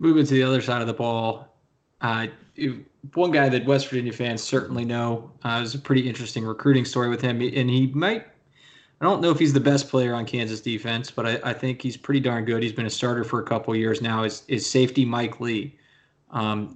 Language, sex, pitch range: English, male, 120-140 Hz